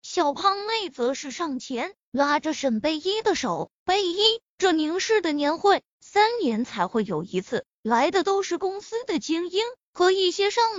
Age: 20-39